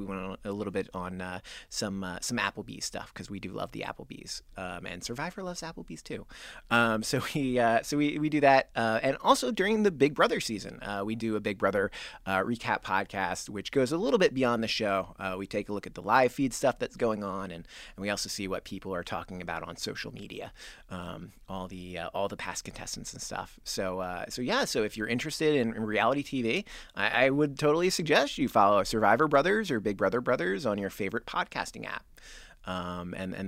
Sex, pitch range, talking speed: male, 95-135 Hz, 230 wpm